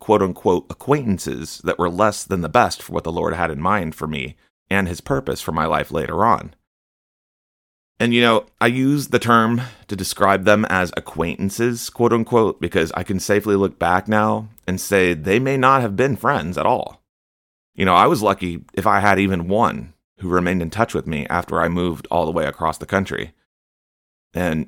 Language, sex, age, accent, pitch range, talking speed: English, male, 30-49, American, 80-110 Hz, 200 wpm